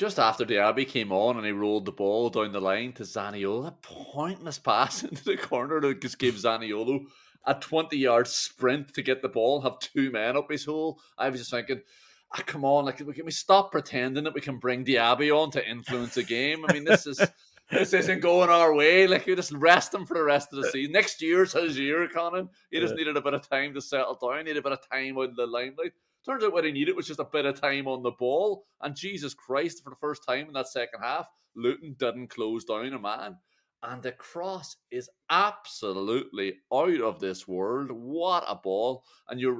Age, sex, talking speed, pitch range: 30-49, male, 230 wpm, 115-155 Hz